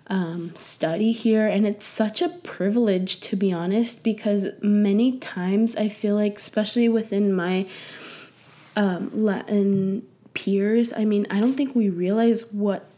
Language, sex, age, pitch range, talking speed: English, female, 20-39, 180-215 Hz, 145 wpm